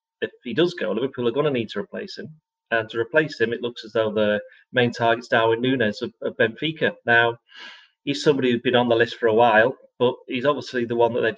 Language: English